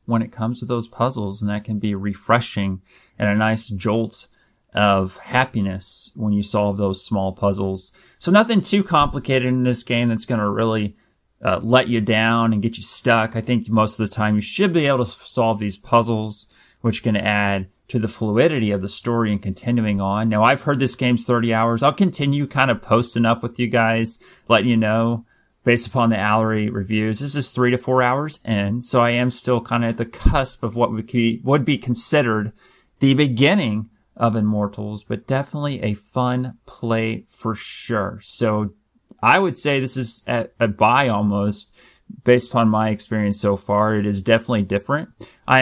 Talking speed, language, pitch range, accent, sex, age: 190 wpm, English, 105-125 Hz, American, male, 30-49